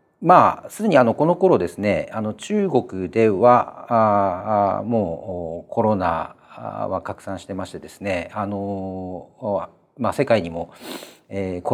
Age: 40-59